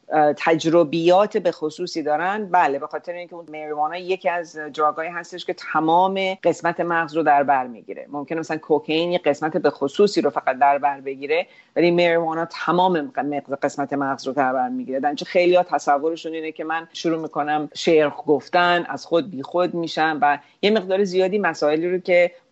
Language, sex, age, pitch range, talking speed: English, female, 40-59, 150-185 Hz, 170 wpm